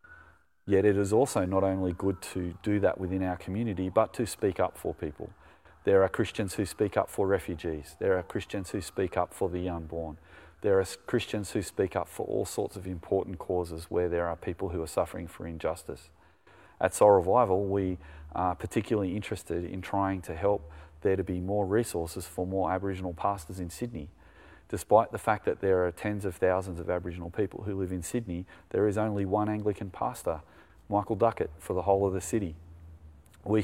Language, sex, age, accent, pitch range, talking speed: English, male, 30-49, Australian, 85-100 Hz, 195 wpm